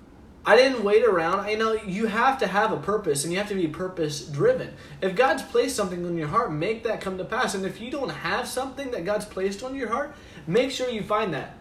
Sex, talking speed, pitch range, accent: male, 250 wpm, 160-210 Hz, American